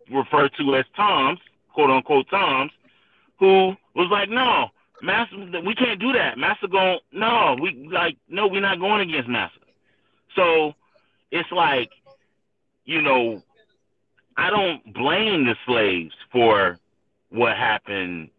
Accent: American